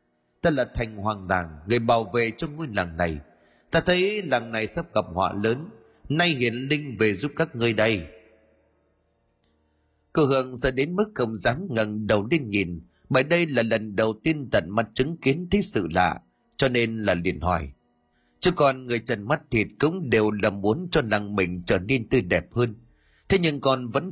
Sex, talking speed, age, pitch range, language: male, 195 wpm, 30-49, 100-145 Hz, Vietnamese